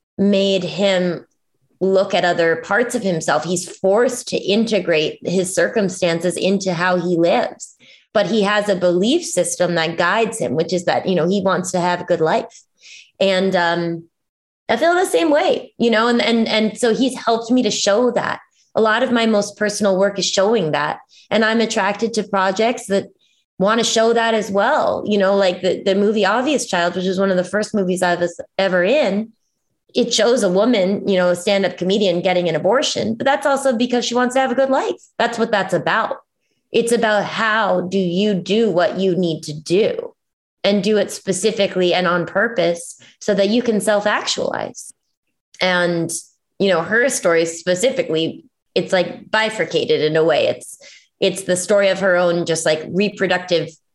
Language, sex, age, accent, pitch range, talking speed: English, female, 20-39, American, 175-220 Hz, 190 wpm